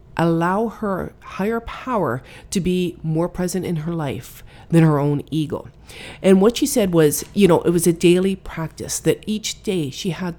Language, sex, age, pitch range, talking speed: English, female, 40-59, 150-185 Hz, 185 wpm